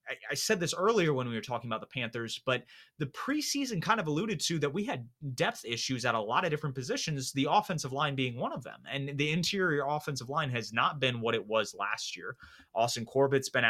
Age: 30-49